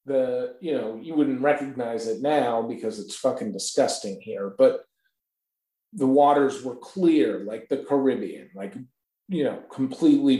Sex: male